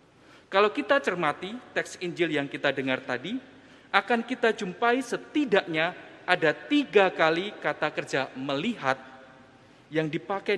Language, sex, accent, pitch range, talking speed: Indonesian, male, native, 135-195 Hz, 120 wpm